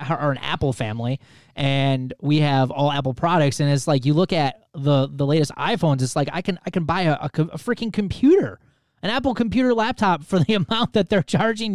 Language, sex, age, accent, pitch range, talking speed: English, male, 20-39, American, 140-185 Hz, 210 wpm